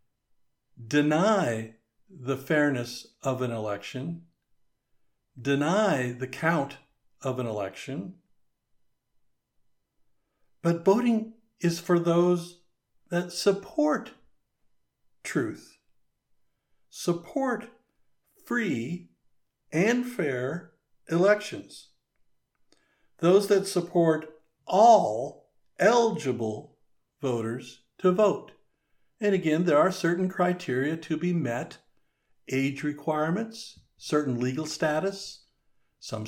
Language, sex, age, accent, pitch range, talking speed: English, male, 60-79, American, 130-175 Hz, 80 wpm